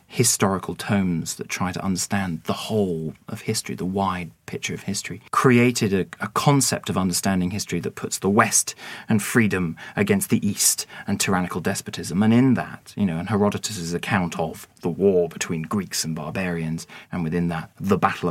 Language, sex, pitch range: English, male, 85-115 Hz